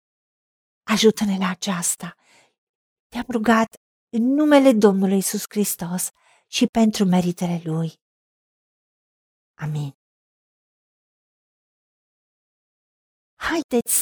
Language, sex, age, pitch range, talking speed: Romanian, female, 50-69, 185-270 Hz, 70 wpm